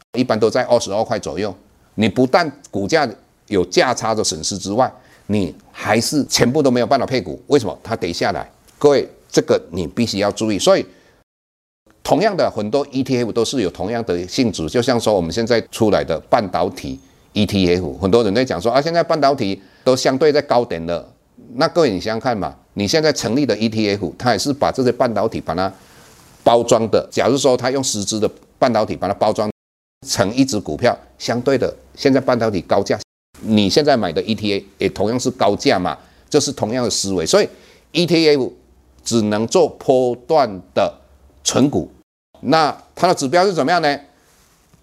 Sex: male